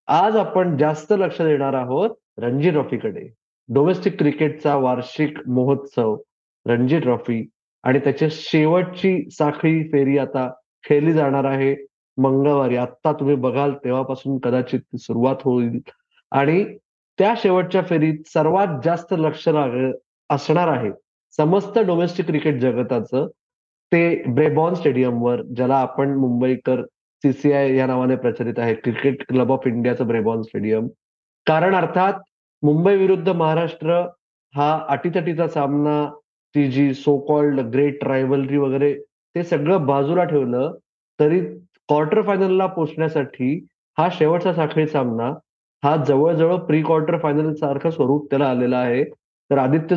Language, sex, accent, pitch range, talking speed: Marathi, male, native, 130-165 Hz, 100 wpm